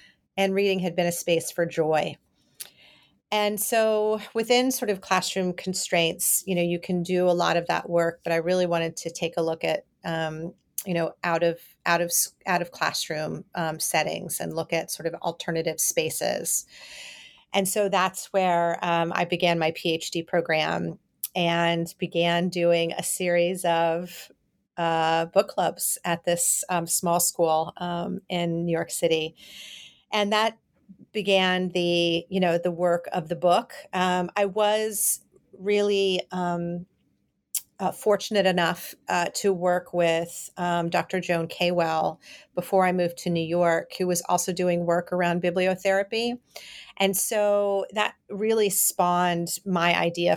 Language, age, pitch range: English, 40-59, 170-190 Hz